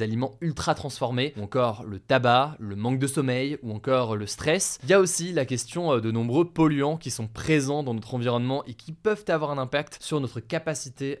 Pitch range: 115-155 Hz